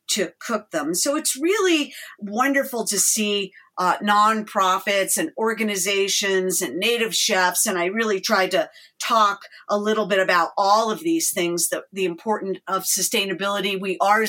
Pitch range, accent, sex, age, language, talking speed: 185-225 Hz, American, female, 50-69, English, 155 wpm